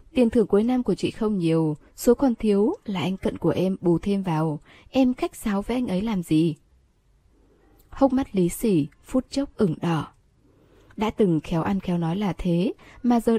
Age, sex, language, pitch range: 10-29, female, Vietnamese, 170-235 Hz